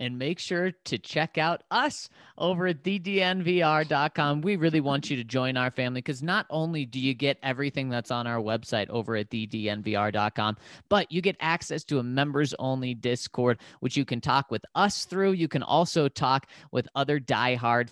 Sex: male